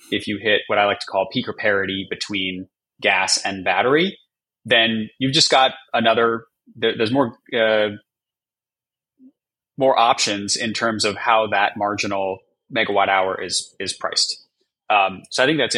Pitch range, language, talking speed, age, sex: 100-120 Hz, English, 155 wpm, 20-39, male